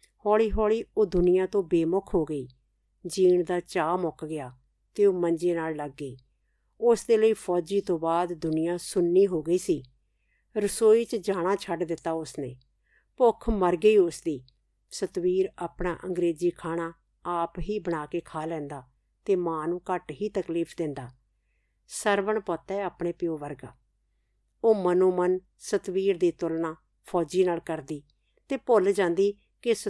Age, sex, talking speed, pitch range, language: 50-69, female, 135 wpm, 160-200 Hz, Punjabi